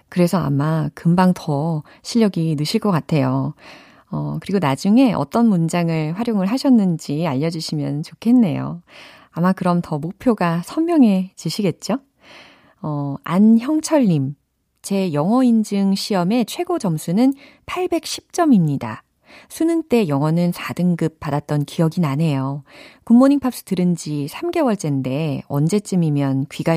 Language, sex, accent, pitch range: Korean, female, native, 155-235 Hz